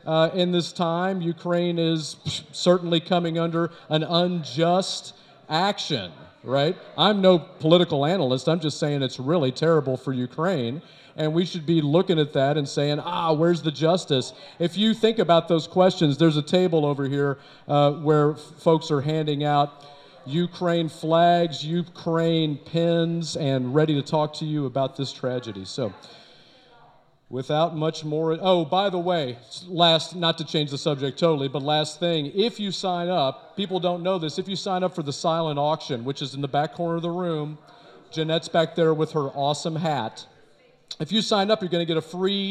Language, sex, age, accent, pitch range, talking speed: English, male, 40-59, American, 150-180 Hz, 180 wpm